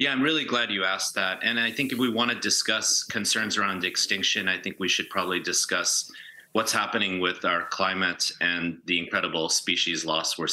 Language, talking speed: English, 200 wpm